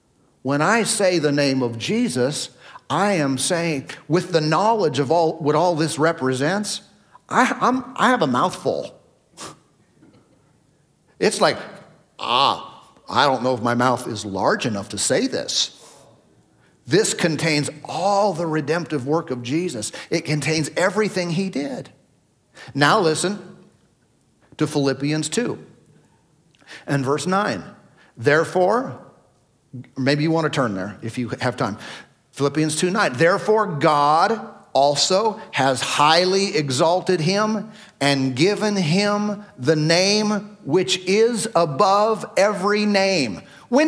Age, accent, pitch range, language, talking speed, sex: 50-69, American, 150-225 Hz, English, 125 wpm, male